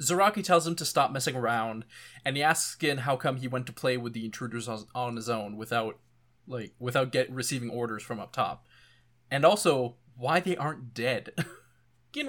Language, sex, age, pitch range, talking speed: English, male, 20-39, 120-150 Hz, 190 wpm